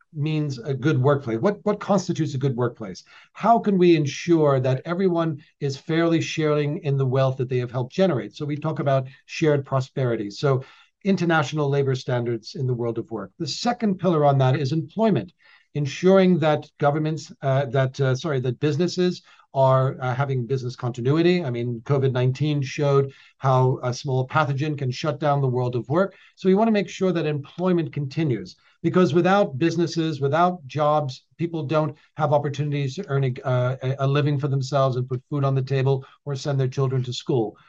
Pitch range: 130-165 Hz